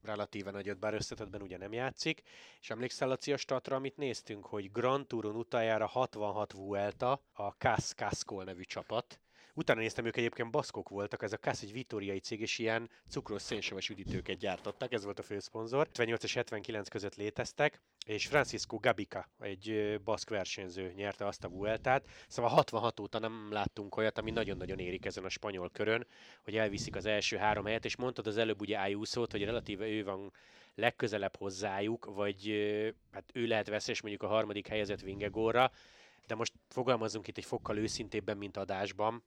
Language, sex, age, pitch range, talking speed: Hungarian, male, 30-49, 105-120 Hz, 175 wpm